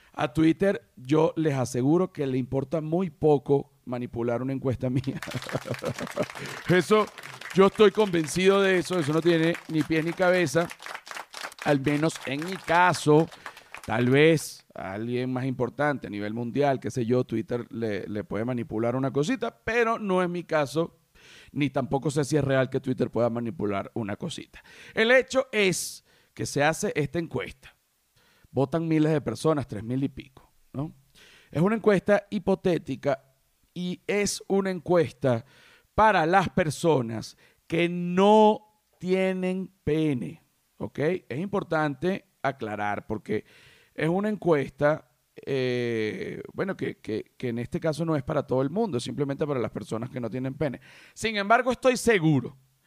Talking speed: 155 wpm